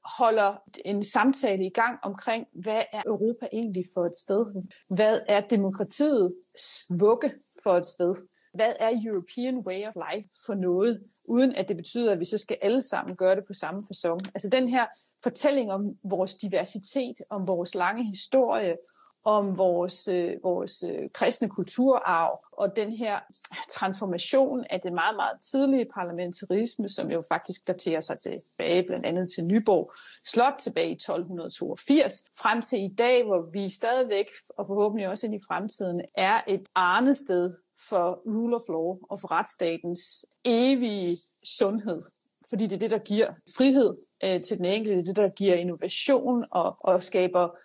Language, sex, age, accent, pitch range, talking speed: Danish, female, 30-49, native, 185-235 Hz, 165 wpm